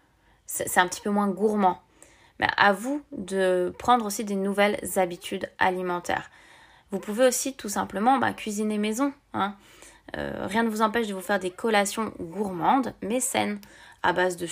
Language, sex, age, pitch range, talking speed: French, female, 20-39, 185-225 Hz, 170 wpm